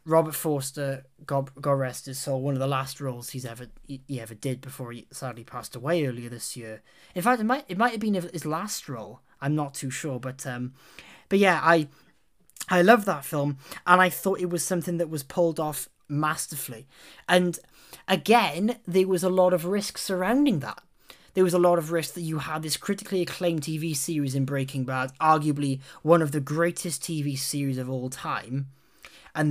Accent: British